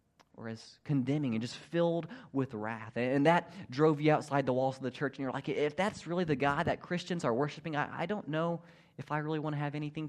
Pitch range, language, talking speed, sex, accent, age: 130-175 Hz, English, 240 wpm, male, American, 30-49